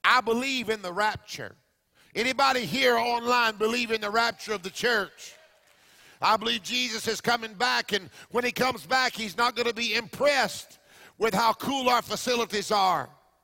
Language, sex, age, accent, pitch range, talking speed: English, male, 50-69, American, 230-275 Hz, 170 wpm